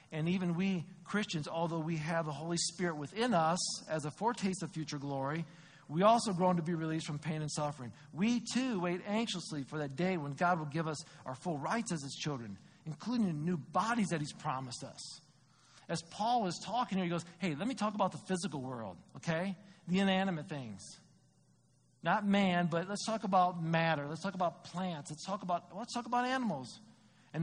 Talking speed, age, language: 205 wpm, 50-69, English